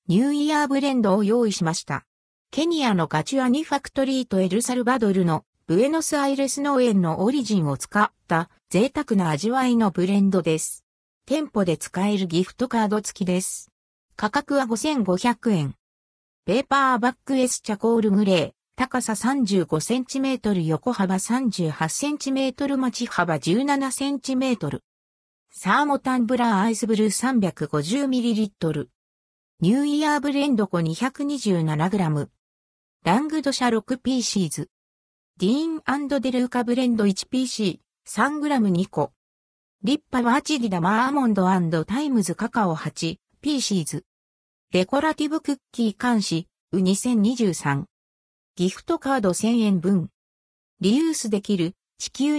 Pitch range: 170-260 Hz